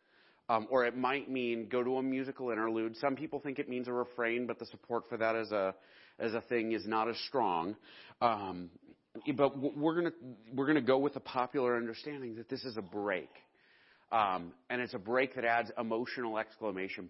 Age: 30-49